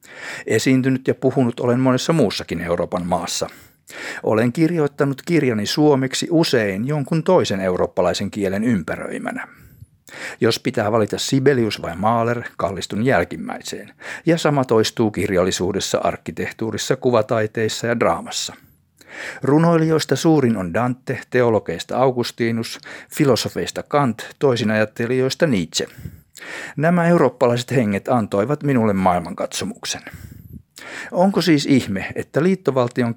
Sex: male